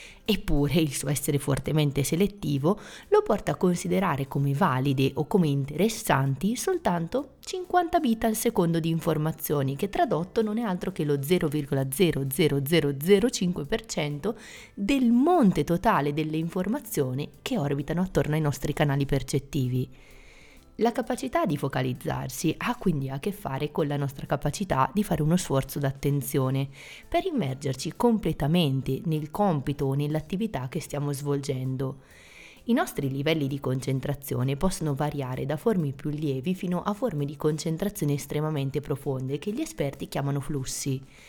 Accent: native